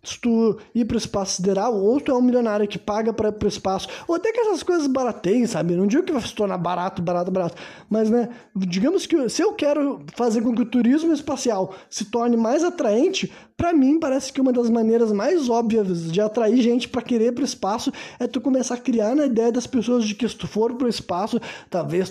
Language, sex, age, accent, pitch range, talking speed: Portuguese, male, 20-39, Brazilian, 205-250 Hz, 230 wpm